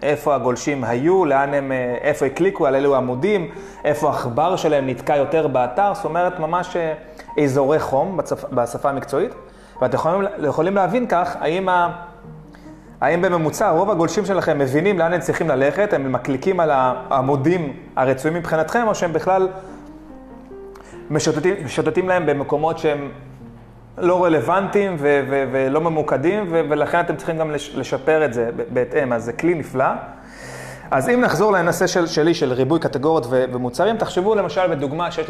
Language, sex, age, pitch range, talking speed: Hebrew, male, 30-49, 135-180 Hz, 150 wpm